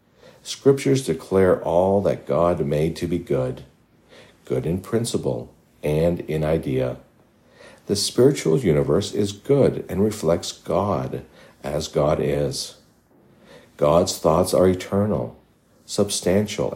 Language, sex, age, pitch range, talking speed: English, male, 60-79, 75-105 Hz, 110 wpm